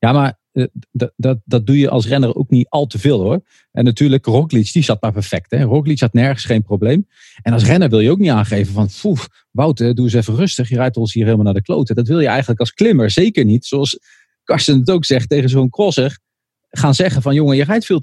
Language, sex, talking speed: English, male, 245 wpm